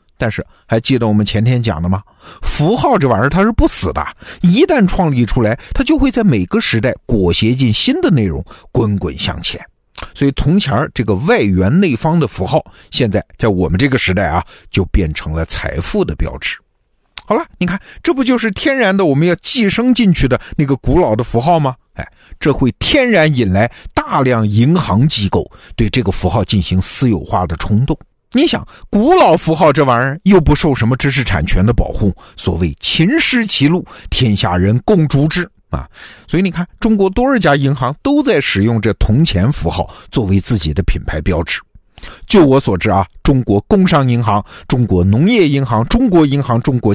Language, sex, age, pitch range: Chinese, male, 50-69, 100-160 Hz